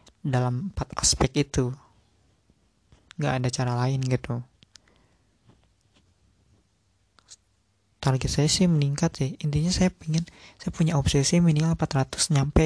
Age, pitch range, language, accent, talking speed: 20-39, 125-145 Hz, Indonesian, native, 110 wpm